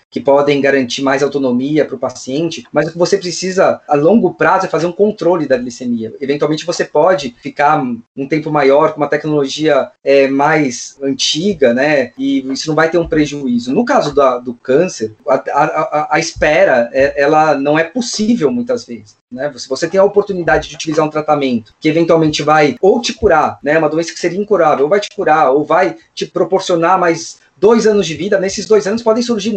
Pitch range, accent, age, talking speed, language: 150-220 Hz, Brazilian, 20-39, 205 wpm, Portuguese